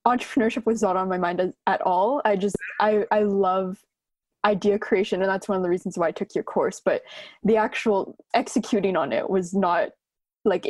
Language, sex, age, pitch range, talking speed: English, female, 20-39, 195-235 Hz, 195 wpm